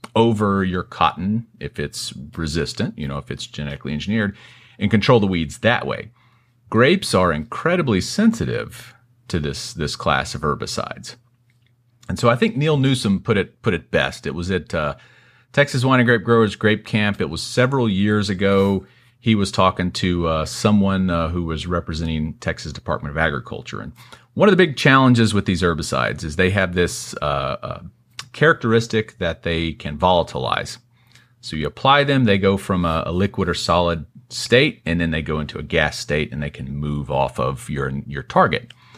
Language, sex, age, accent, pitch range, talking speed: English, male, 40-59, American, 80-120 Hz, 185 wpm